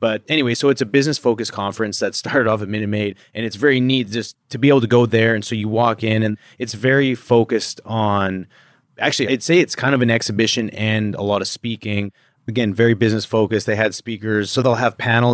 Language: English